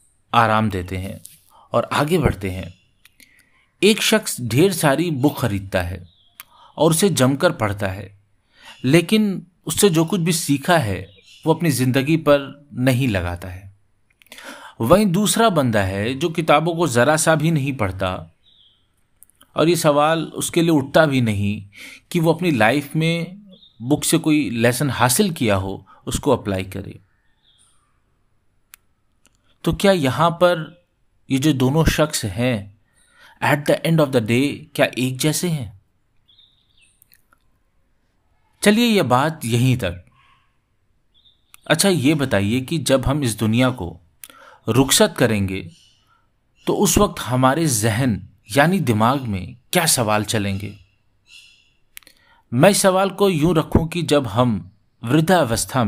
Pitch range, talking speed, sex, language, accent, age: 100-160 Hz, 130 wpm, male, Hindi, native, 50-69